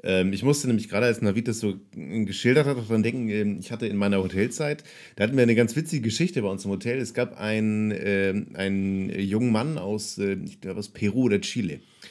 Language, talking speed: German, 195 wpm